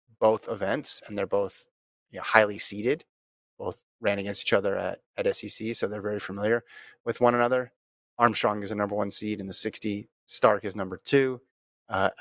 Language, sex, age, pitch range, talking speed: English, male, 30-49, 95-115 Hz, 185 wpm